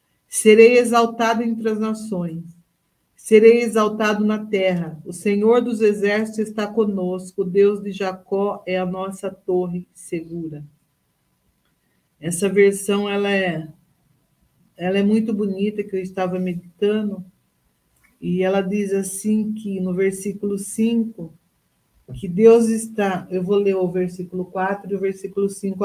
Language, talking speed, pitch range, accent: Portuguese, 125 wpm, 180-215 Hz, Brazilian